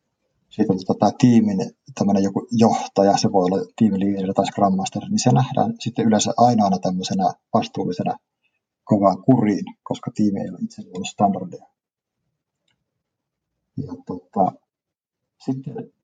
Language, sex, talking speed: Finnish, male, 110 wpm